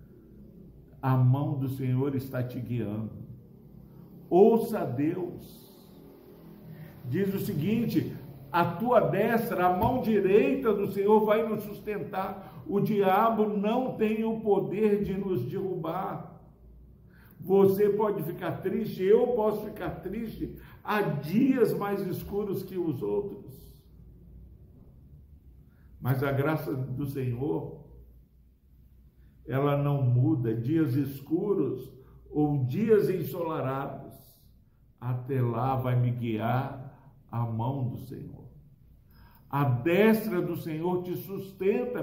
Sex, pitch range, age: male, 130-195 Hz, 60-79